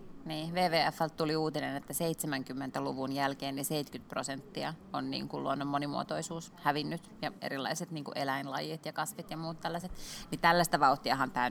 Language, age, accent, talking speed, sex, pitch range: Finnish, 20-39, native, 155 wpm, female, 145-180 Hz